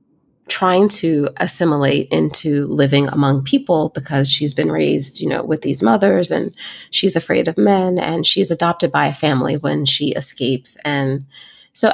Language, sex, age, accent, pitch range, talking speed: English, female, 30-49, American, 140-180 Hz, 160 wpm